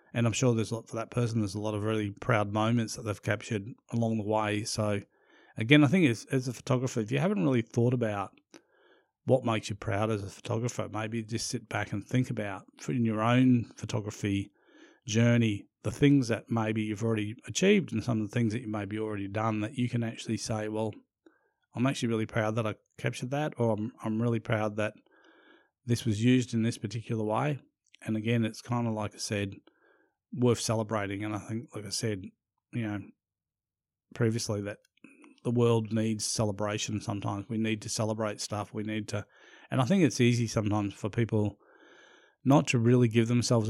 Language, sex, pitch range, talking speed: English, male, 110-125 Hz, 200 wpm